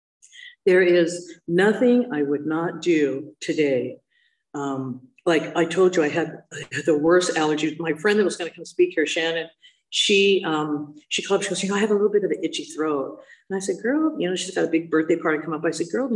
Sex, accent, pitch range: female, American, 155-210 Hz